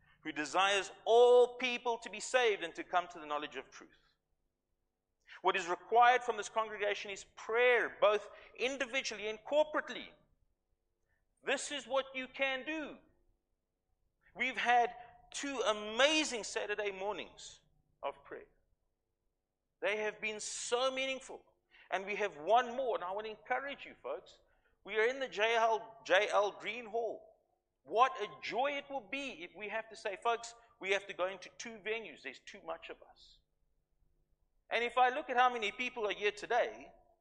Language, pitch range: English, 175-255 Hz